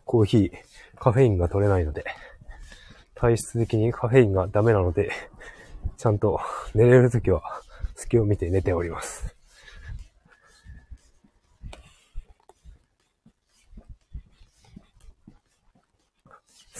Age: 40-59